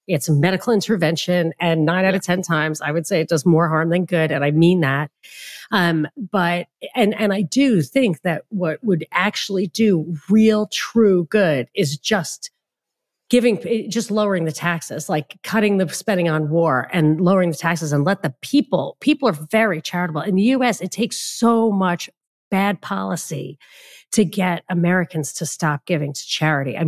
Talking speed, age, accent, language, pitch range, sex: 180 wpm, 40-59, American, English, 165-210 Hz, female